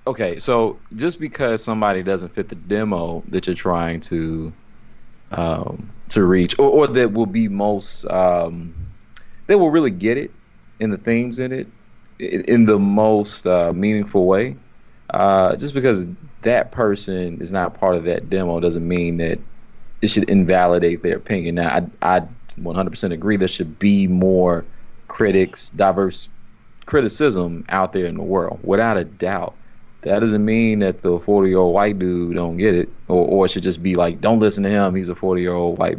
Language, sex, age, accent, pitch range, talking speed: English, male, 30-49, American, 90-115 Hz, 175 wpm